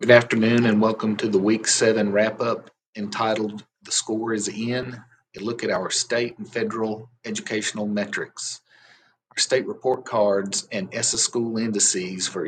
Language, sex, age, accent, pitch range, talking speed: English, male, 40-59, American, 105-120 Hz, 155 wpm